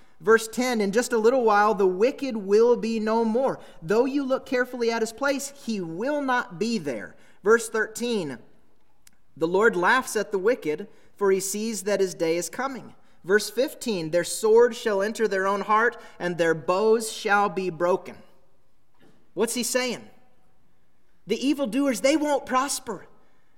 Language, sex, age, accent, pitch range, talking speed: English, male, 30-49, American, 195-250 Hz, 165 wpm